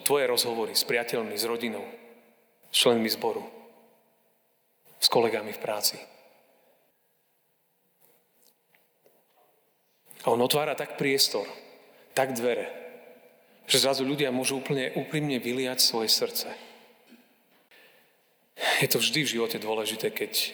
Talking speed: 105 wpm